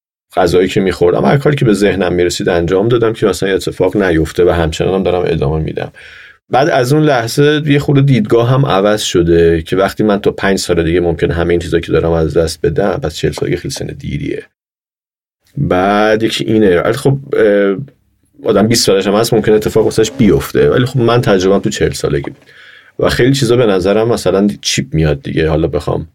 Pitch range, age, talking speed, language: 85-115 Hz, 30-49, 190 wpm, Persian